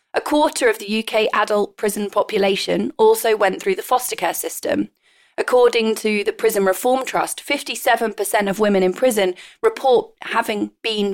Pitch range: 205-325 Hz